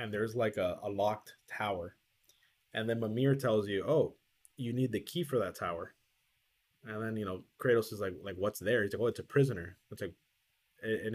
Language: English